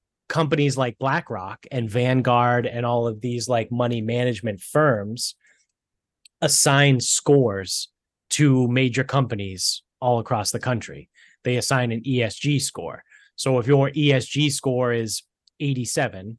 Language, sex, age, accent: English, male, 30-49, American